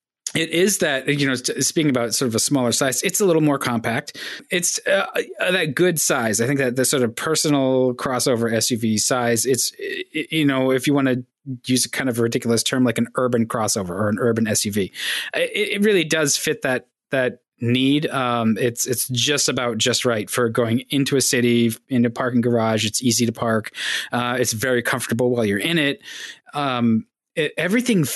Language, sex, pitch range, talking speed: English, male, 120-145 Hz, 200 wpm